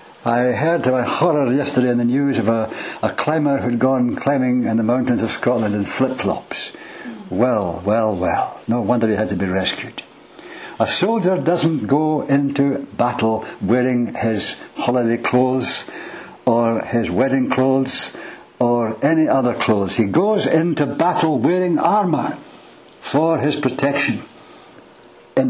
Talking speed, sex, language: 145 wpm, male, English